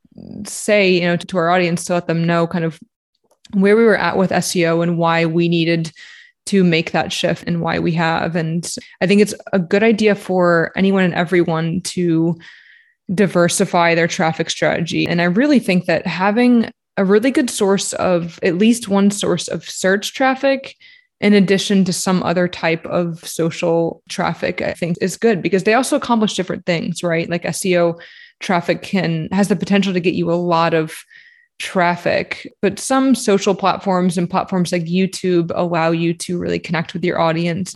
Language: English